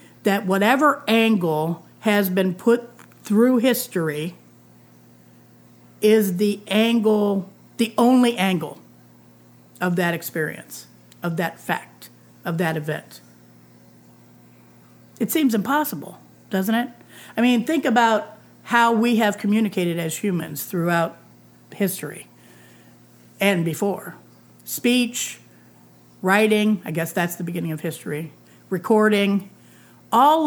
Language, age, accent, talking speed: English, 50-69, American, 105 wpm